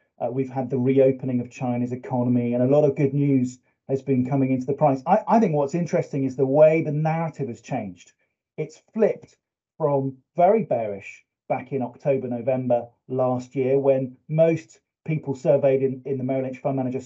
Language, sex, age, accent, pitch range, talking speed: Swedish, male, 40-59, British, 130-155 Hz, 190 wpm